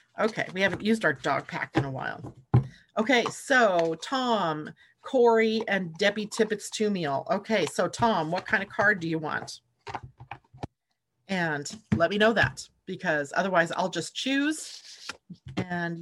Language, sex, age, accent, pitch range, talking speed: English, female, 40-59, American, 145-215 Hz, 150 wpm